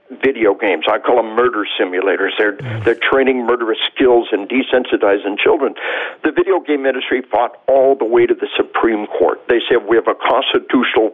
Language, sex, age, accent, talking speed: English, male, 60-79, American, 180 wpm